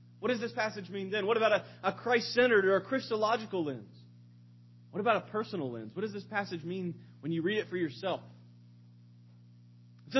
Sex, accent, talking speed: male, American, 190 wpm